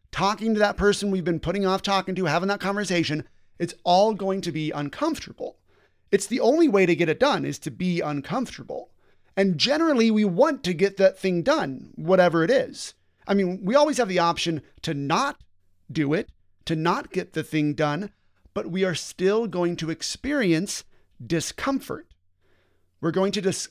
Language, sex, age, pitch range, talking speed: English, male, 30-49, 155-195 Hz, 180 wpm